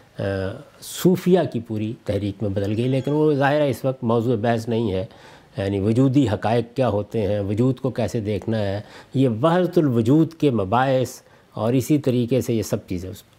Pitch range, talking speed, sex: 115-175 Hz, 185 wpm, male